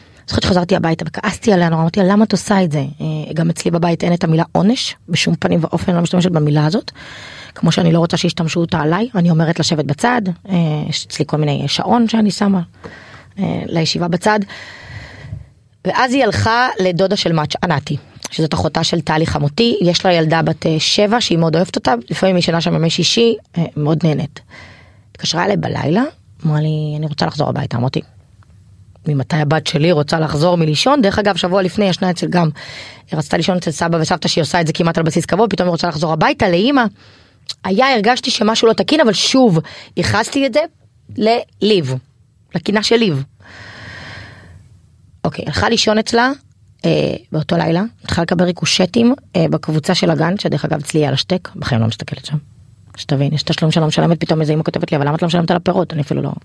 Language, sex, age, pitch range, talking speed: Hebrew, female, 20-39, 150-190 Hz, 165 wpm